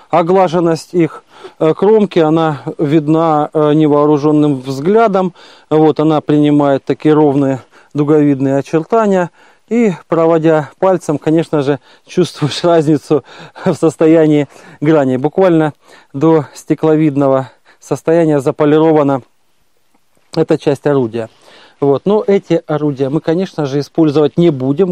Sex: male